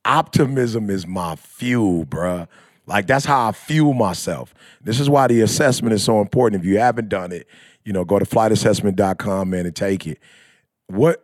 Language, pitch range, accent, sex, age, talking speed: English, 100-140 Hz, American, male, 30-49, 180 wpm